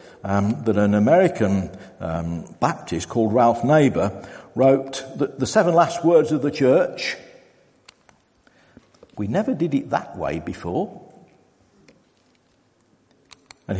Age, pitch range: 50-69, 110-180 Hz